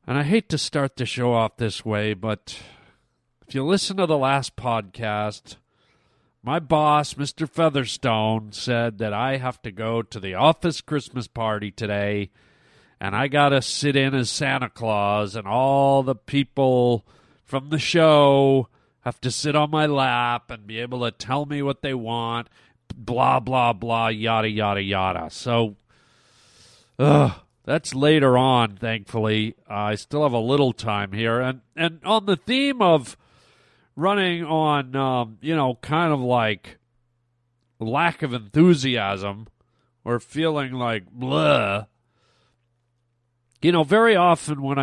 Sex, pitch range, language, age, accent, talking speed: male, 115-150 Hz, English, 40-59, American, 150 wpm